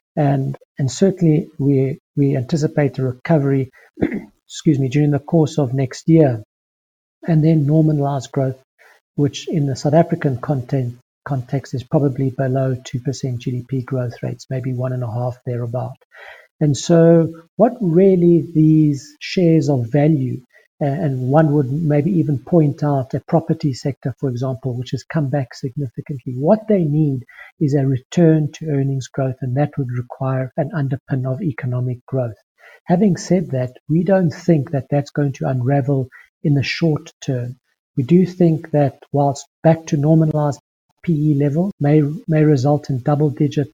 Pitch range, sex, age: 135-160 Hz, male, 60-79